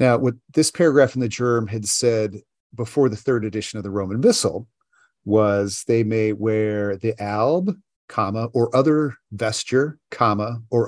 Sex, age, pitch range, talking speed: male, 40-59, 105-130 Hz, 160 wpm